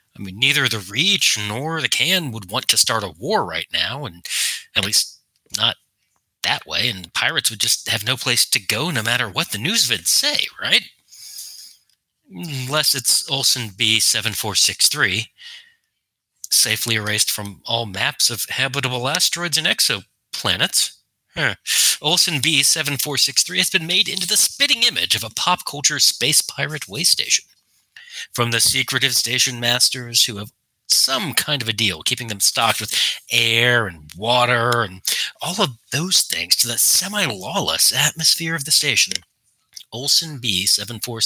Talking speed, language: 155 wpm, English